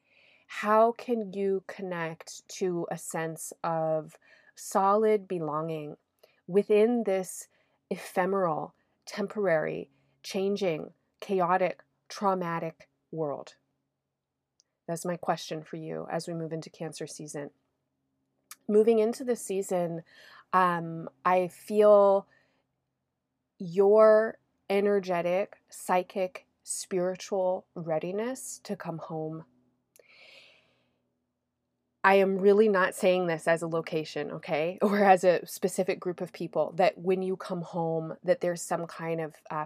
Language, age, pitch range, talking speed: English, 30-49, 165-195 Hz, 110 wpm